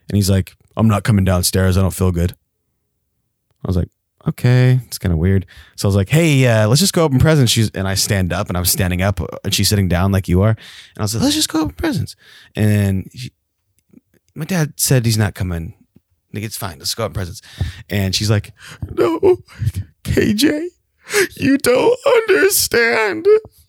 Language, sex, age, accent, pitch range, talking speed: English, male, 20-39, American, 95-120 Hz, 200 wpm